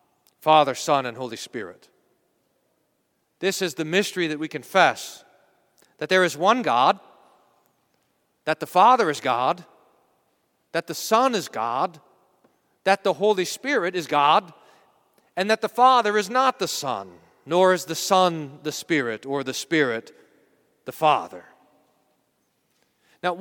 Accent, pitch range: American, 145-205 Hz